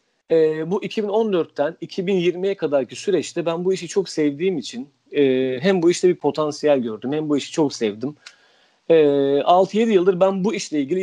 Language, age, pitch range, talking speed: Turkish, 40-59, 140-195 Hz, 170 wpm